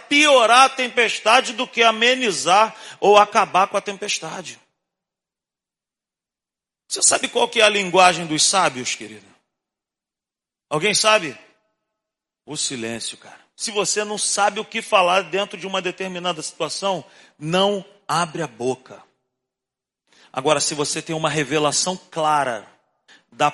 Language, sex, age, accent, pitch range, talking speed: Portuguese, male, 40-59, Brazilian, 150-215 Hz, 125 wpm